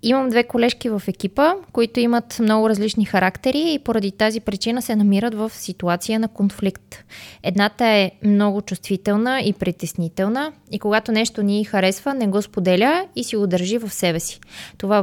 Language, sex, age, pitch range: Bulgarian, female, 20-39, 190-235 Hz